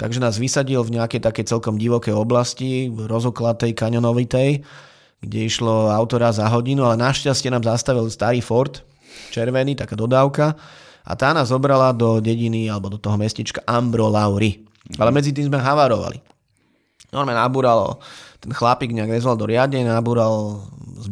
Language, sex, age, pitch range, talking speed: Slovak, male, 30-49, 110-130 Hz, 150 wpm